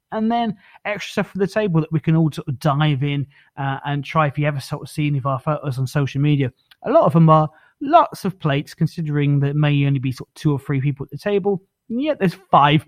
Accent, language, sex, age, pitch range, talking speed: British, English, male, 30-49, 135-165 Hz, 260 wpm